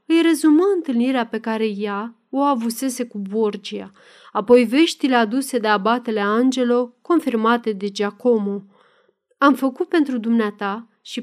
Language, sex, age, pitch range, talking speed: Romanian, female, 30-49, 215-285 Hz, 130 wpm